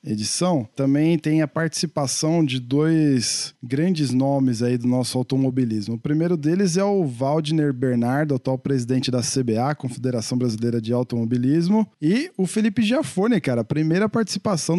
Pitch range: 125-155 Hz